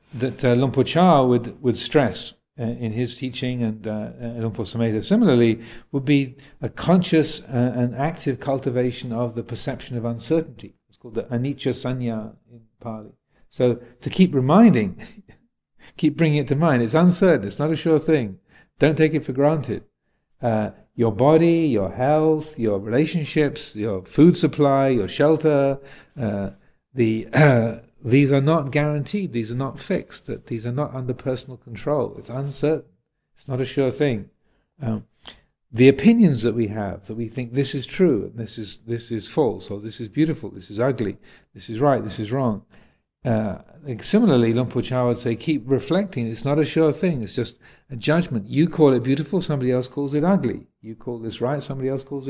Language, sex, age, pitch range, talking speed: English, male, 50-69, 115-150 Hz, 180 wpm